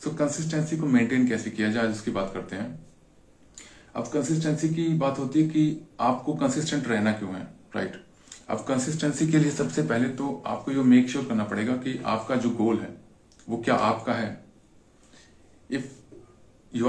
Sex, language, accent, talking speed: male, Hindi, native, 180 wpm